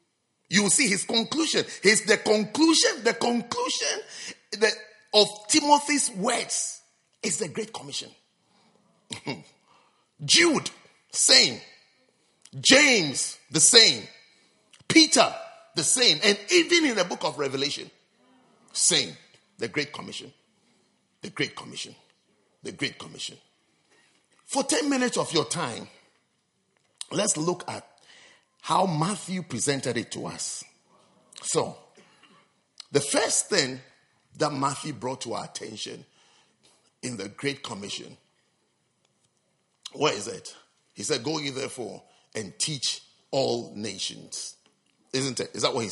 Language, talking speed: English, 115 wpm